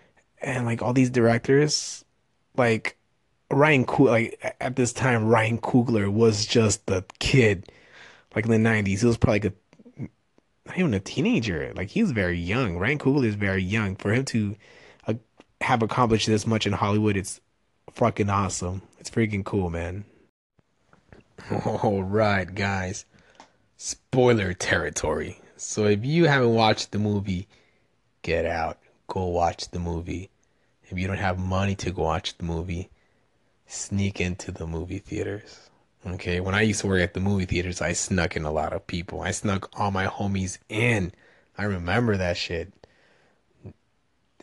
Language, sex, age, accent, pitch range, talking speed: English, male, 20-39, American, 90-115 Hz, 160 wpm